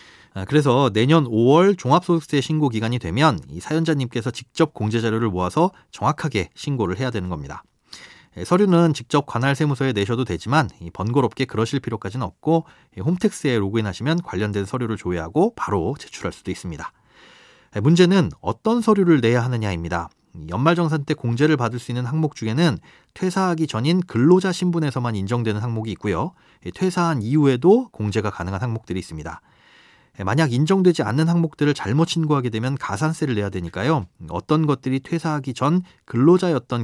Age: 30-49